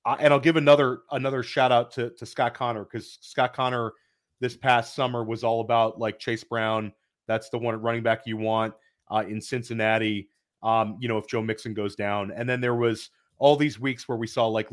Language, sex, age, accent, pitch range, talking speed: English, male, 30-49, American, 110-135 Hz, 215 wpm